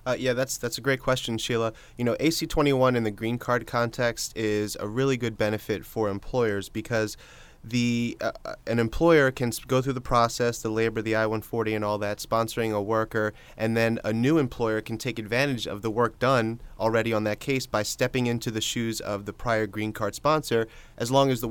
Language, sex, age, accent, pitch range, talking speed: English, male, 30-49, American, 110-125 Hz, 205 wpm